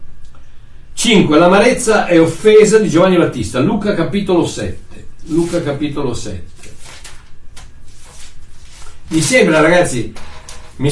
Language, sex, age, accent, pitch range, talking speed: Italian, male, 60-79, native, 115-170 Hz, 95 wpm